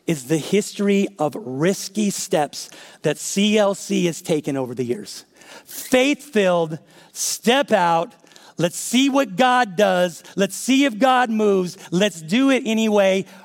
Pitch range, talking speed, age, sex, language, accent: 190-235 Hz, 135 wpm, 40-59, male, English, American